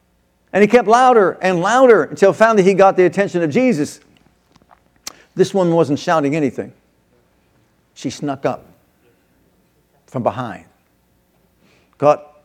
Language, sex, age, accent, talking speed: English, male, 60-79, American, 120 wpm